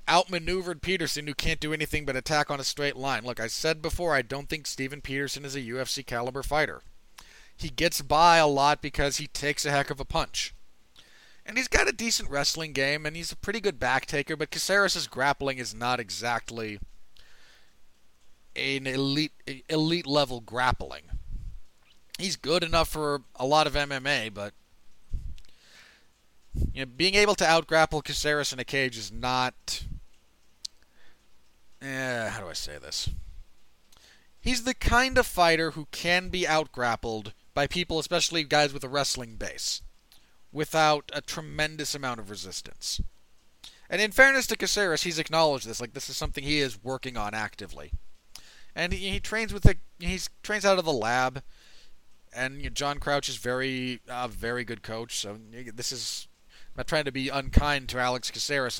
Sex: male